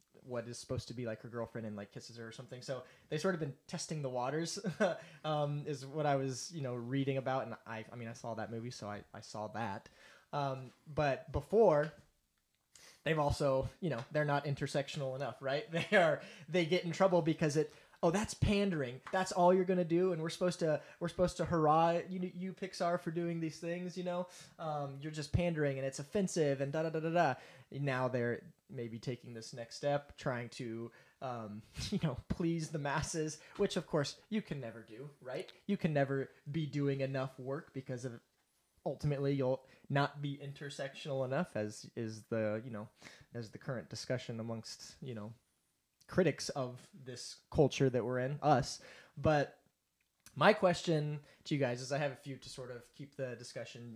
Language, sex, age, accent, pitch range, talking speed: English, male, 20-39, American, 120-160 Hz, 195 wpm